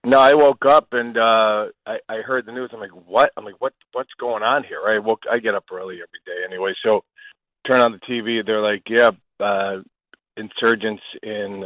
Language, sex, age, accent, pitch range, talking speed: English, male, 40-59, American, 100-115 Hz, 210 wpm